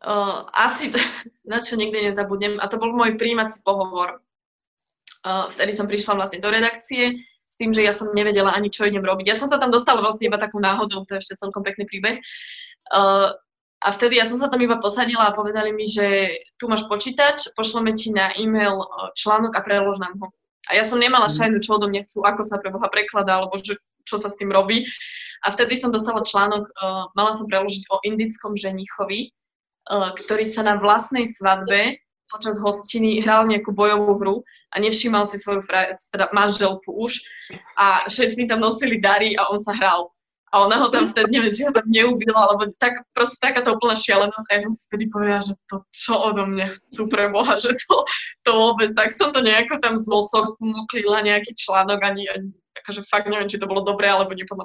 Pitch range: 200-225 Hz